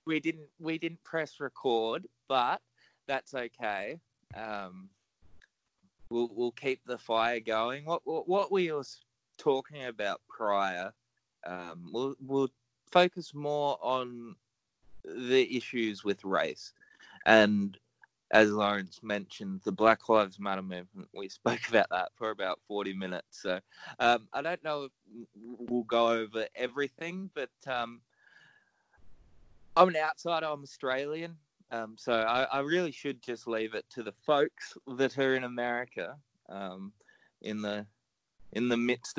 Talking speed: 140 wpm